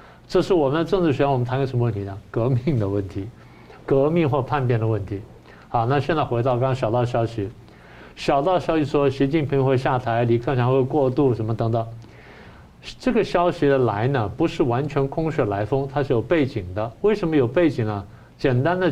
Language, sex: Chinese, male